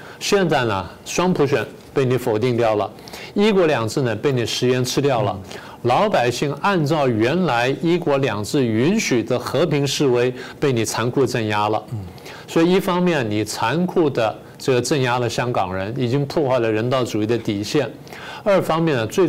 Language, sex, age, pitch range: Chinese, male, 50-69, 110-150 Hz